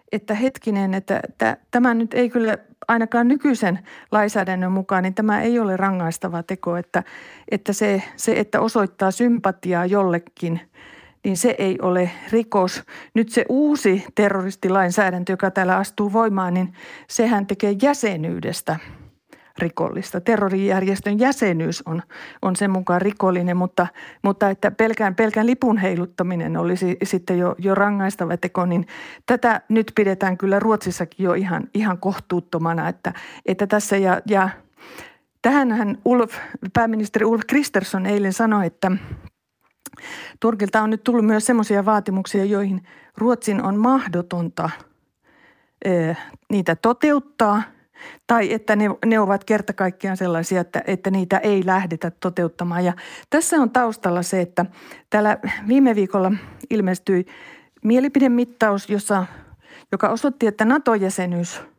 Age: 50-69